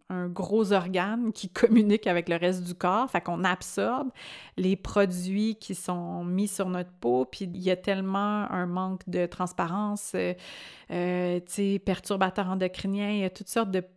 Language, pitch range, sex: French, 180-215 Hz, female